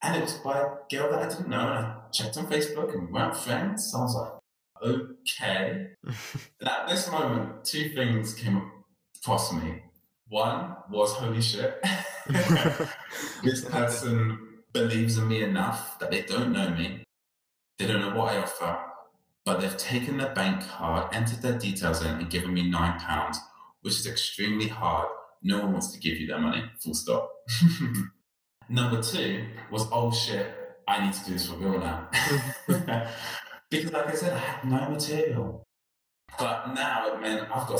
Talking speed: 175 wpm